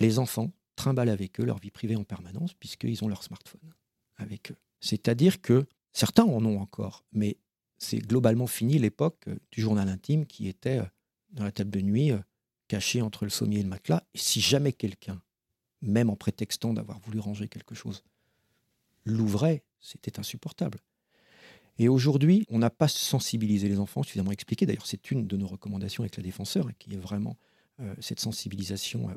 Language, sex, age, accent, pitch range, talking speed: French, male, 50-69, French, 100-120 Hz, 170 wpm